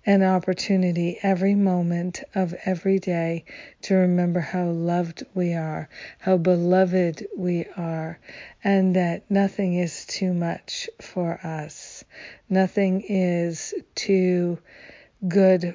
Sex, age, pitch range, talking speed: female, 50-69, 175-195 Hz, 110 wpm